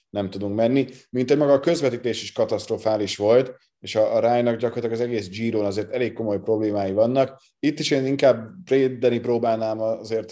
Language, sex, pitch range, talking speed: Hungarian, male, 110-125 Hz, 170 wpm